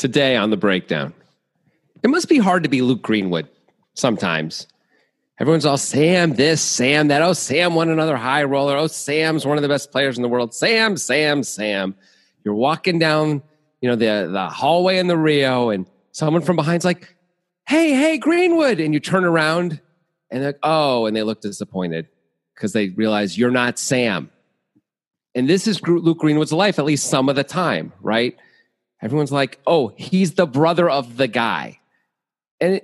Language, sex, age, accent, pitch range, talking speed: English, male, 40-59, American, 135-195 Hz, 180 wpm